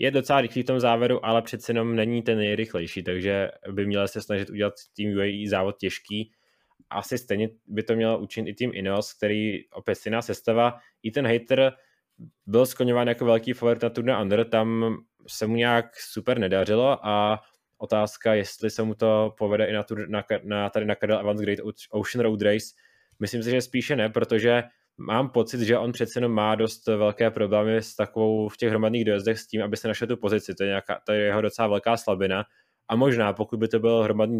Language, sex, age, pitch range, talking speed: Czech, male, 20-39, 105-115 Hz, 200 wpm